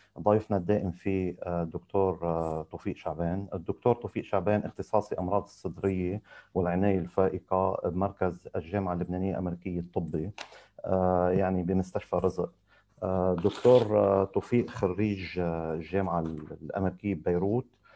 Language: Arabic